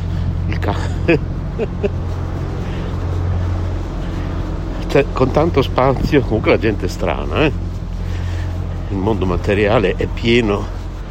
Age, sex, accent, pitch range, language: 60-79, male, native, 85-105 Hz, Italian